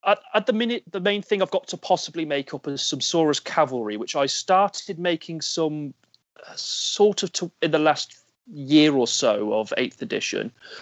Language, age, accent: English, 30-49, British